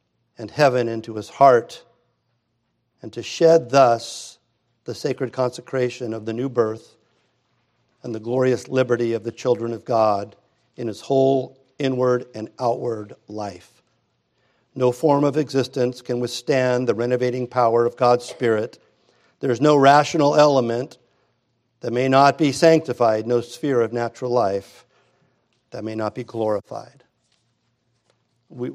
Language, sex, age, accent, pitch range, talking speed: English, male, 50-69, American, 115-130 Hz, 135 wpm